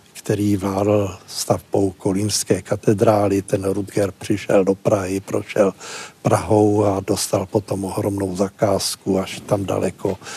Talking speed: 115 wpm